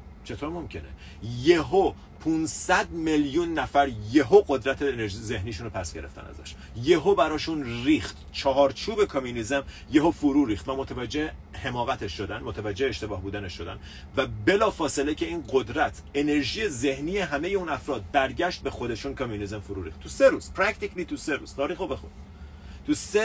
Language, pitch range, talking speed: Persian, 90-145 Hz, 145 wpm